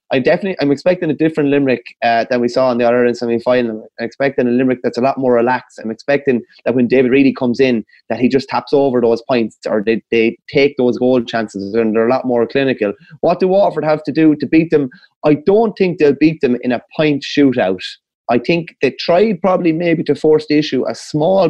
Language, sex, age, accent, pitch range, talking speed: English, male, 20-39, Irish, 120-155 Hz, 235 wpm